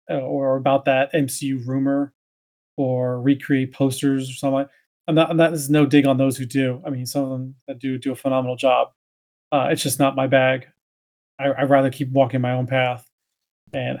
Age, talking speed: 30-49, 195 wpm